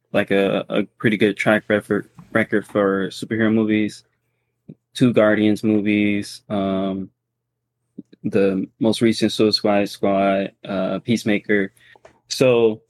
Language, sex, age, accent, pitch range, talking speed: English, male, 20-39, American, 100-120 Hz, 105 wpm